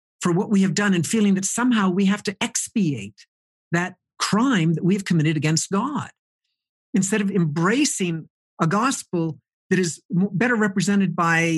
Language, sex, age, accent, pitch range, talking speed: English, male, 50-69, American, 155-200 Hz, 155 wpm